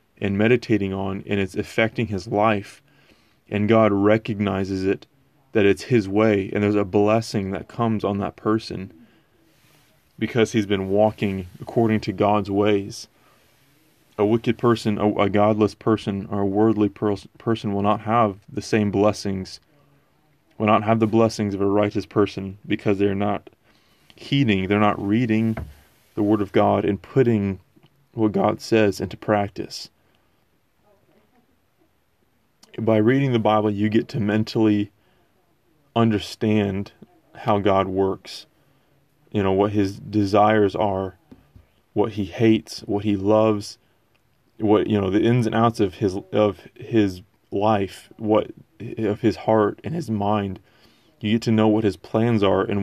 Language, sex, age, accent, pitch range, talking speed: English, male, 20-39, American, 100-110 Hz, 145 wpm